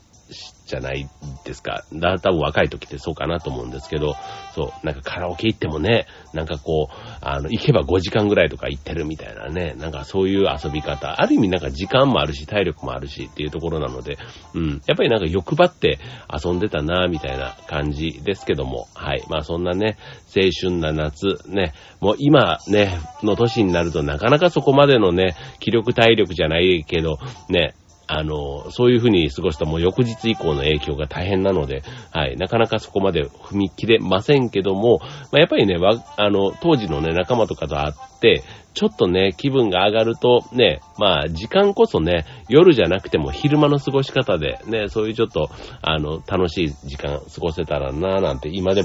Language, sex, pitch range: Japanese, male, 75-105 Hz